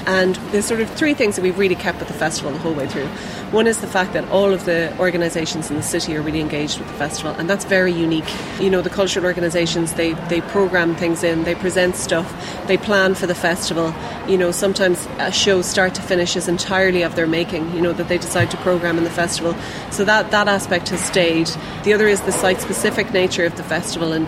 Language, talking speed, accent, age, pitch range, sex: English, 240 wpm, Irish, 30-49, 170-190 Hz, female